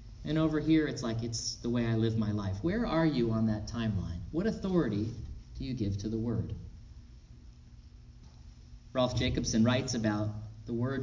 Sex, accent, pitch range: male, American, 110-155 Hz